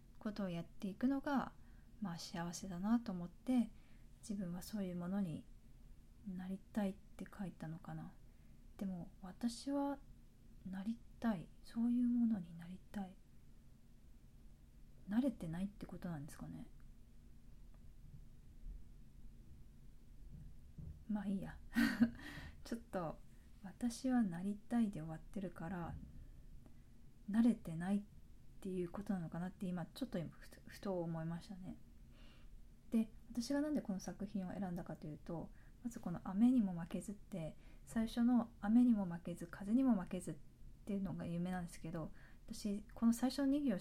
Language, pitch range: Japanese, 180-230 Hz